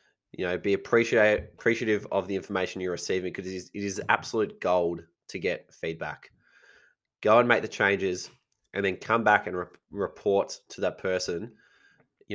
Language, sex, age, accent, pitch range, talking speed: English, male, 20-39, Australian, 95-110 Hz, 170 wpm